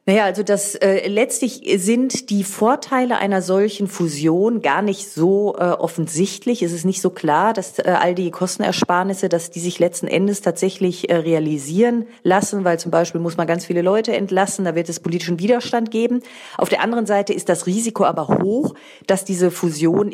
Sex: female